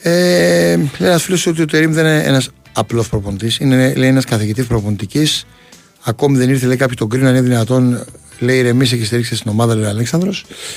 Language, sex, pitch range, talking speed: Greek, male, 120-155 Hz, 190 wpm